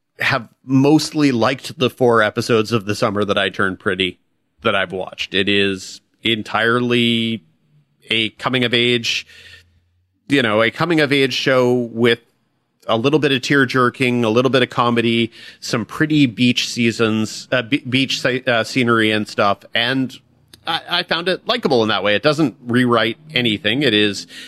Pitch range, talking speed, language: 110-125 Hz, 165 wpm, English